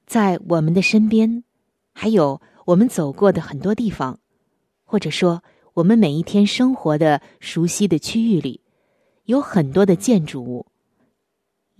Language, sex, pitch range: Chinese, female, 165-225 Hz